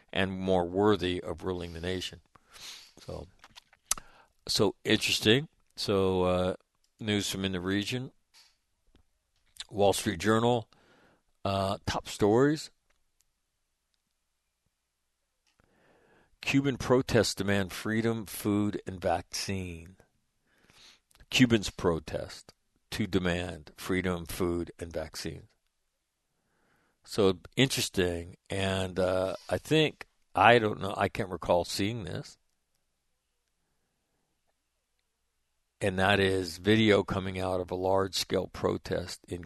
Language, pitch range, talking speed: English, 90-105 Hz, 95 wpm